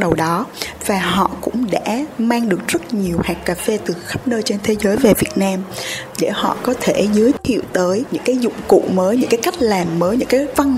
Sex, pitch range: female, 180-235 Hz